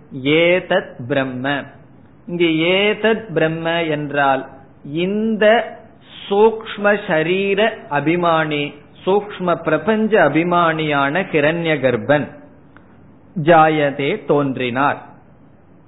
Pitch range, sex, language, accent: 145-180 Hz, male, Tamil, native